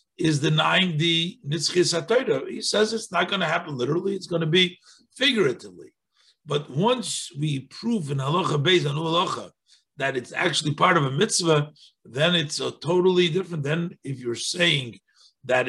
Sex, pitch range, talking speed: male, 115-165 Hz, 155 wpm